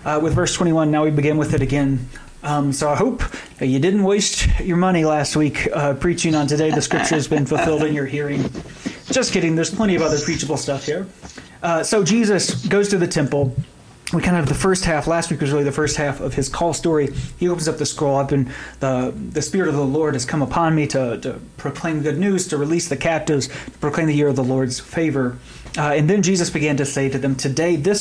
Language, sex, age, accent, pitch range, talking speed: English, male, 30-49, American, 145-185 Hz, 245 wpm